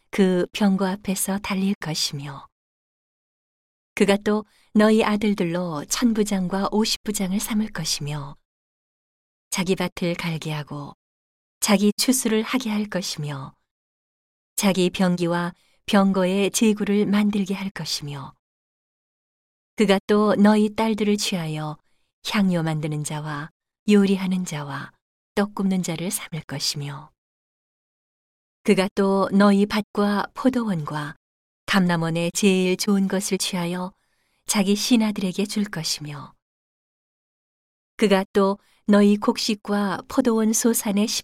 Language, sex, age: Korean, female, 40-59